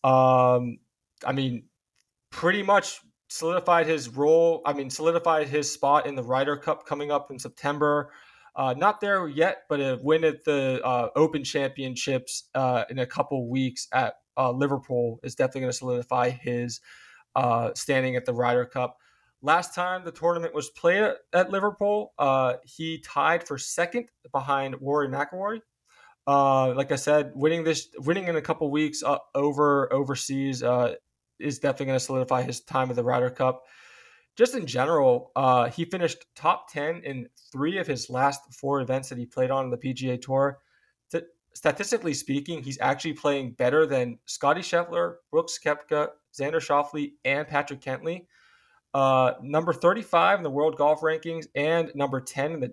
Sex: male